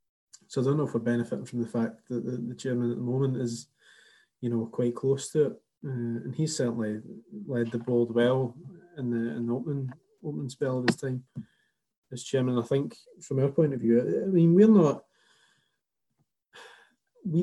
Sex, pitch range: male, 120-150 Hz